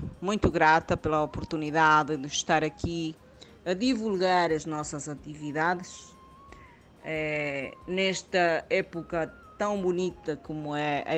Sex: female